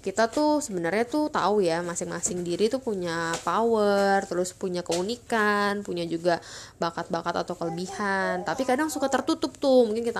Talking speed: 155 wpm